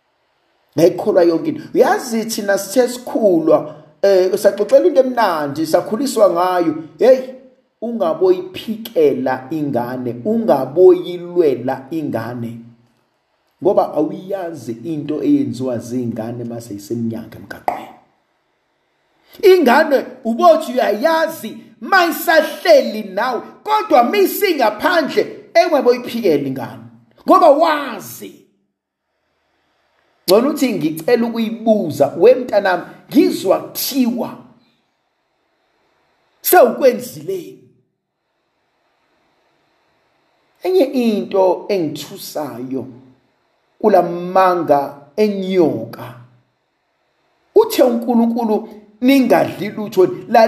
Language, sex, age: English, male, 50-69